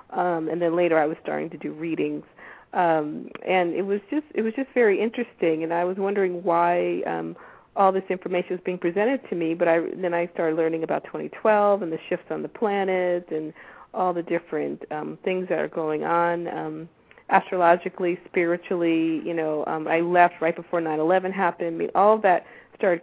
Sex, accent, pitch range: female, American, 165-190 Hz